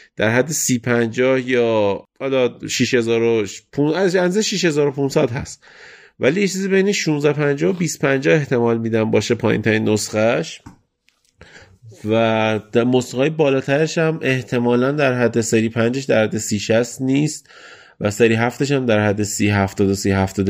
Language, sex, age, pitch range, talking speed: Persian, male, 30-49, 105-135 Hz, 125 wpm